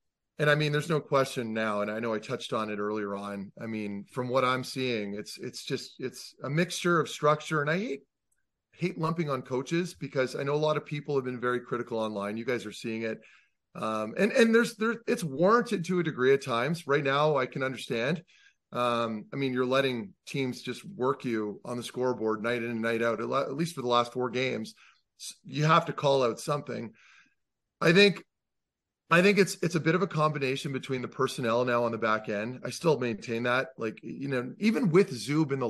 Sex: male